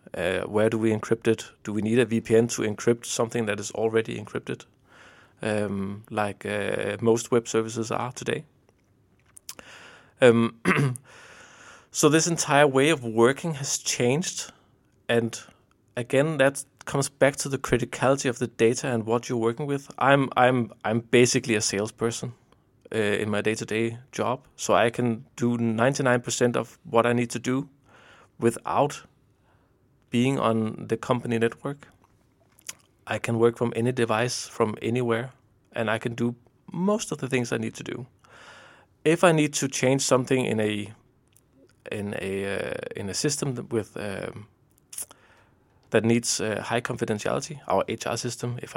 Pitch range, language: 110-130 Hz, Danish